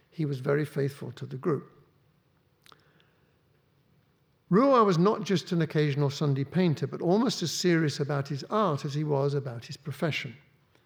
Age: 60-79